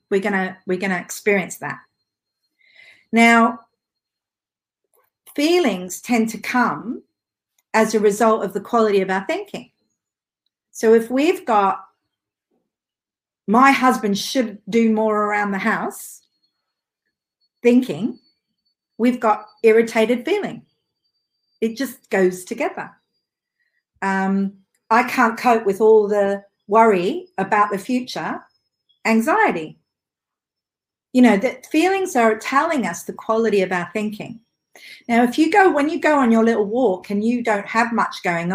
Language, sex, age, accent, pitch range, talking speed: English, female, 50-69, Australian, 200-255 Hz, 130 wpm